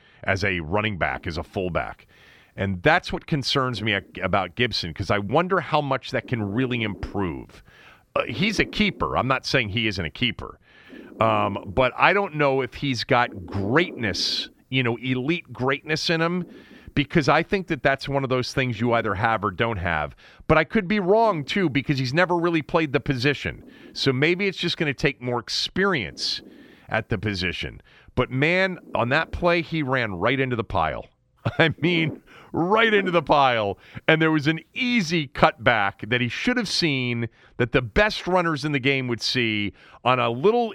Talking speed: 190 wpm